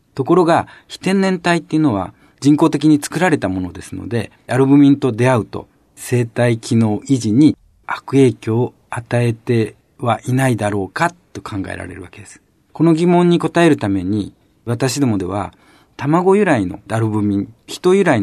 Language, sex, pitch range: Japanese, male, 105-150 Hz